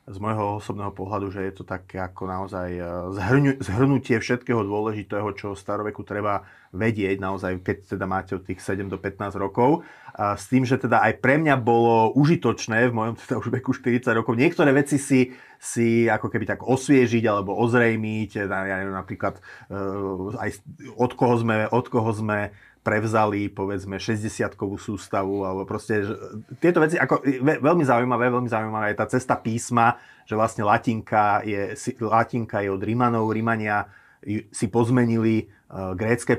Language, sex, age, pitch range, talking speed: Slovak, male, 30-49, 100-120 Hz, 150 wpm